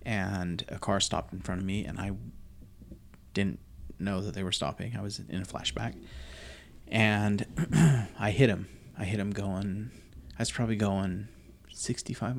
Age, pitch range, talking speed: 30-49, 95-110 Hz, 165 wpm